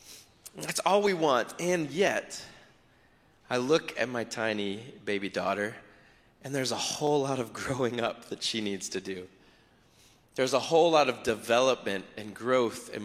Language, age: English, 20-39